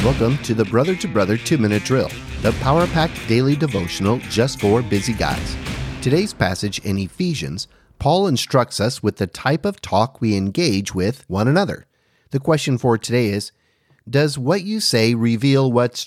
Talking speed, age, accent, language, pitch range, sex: 165 wpm, 40-59, American, English, 105-145 Hz, male